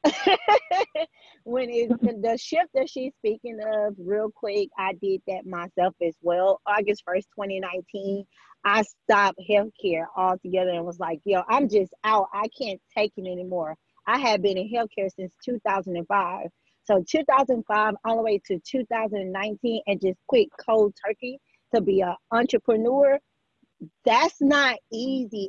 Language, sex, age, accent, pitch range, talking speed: English, female, 30-49, American, 195-255 Hz, 145 wpm